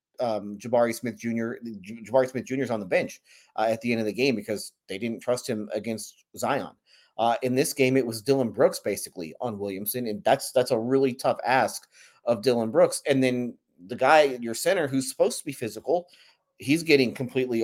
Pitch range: 110-130 Hz